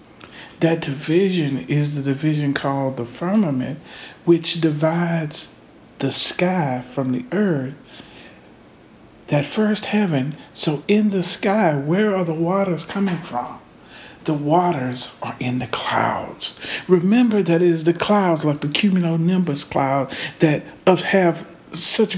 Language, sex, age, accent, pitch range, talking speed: English, male, 50-69, American, 135-180 Hz, 125 wpm